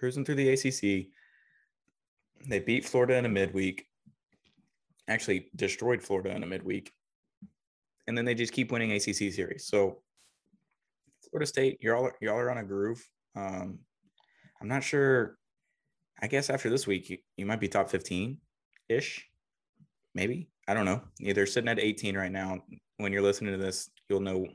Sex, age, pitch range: male, 20-39, 95-125 Hz